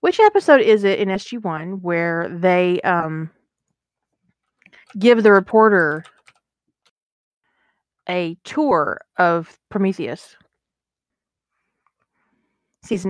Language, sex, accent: English, female, American